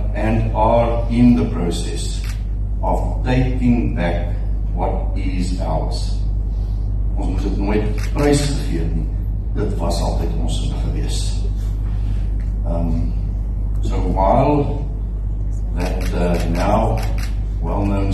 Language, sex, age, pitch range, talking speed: English, male, 60-79, 90-105 Hz, 55 wpm